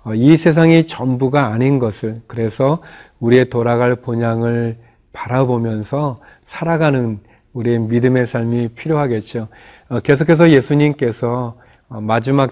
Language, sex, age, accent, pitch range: Korean, male, 40-59, native, 120-145 Hz